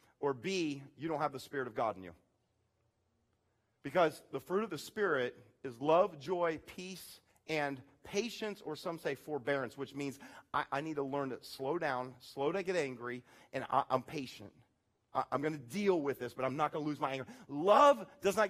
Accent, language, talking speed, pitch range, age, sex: American, English, 200 wpm, 145-235 Hz, 40-59, male